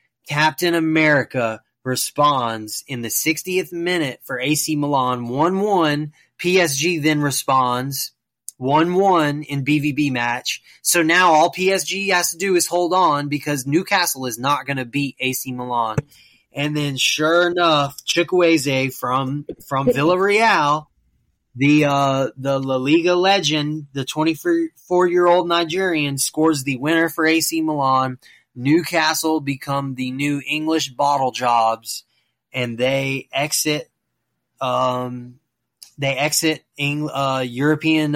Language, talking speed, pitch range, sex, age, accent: English, 120 wpm, 130-165 Hz, male, 20-39, American